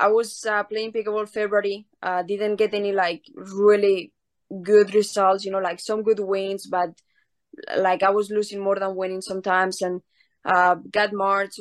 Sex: female